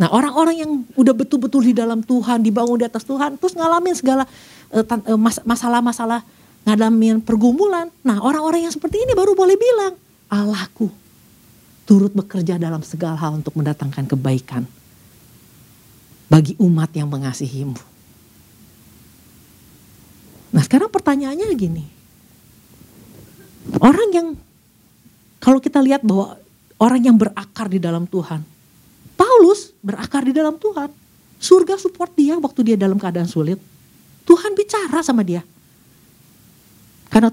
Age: 50-69